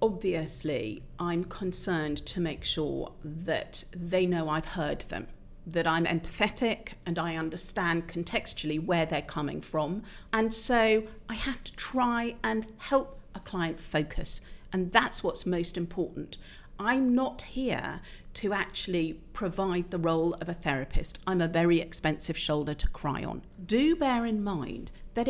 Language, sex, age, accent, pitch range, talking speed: English, female, 50-69, British, 165-225 Hz, 150 wpm